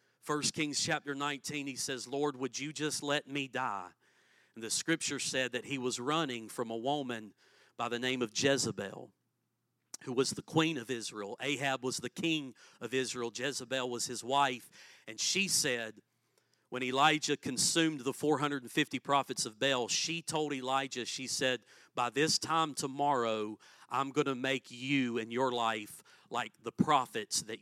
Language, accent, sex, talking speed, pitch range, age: English, American, male, 165 wpm, 120-150 Hz, 40-59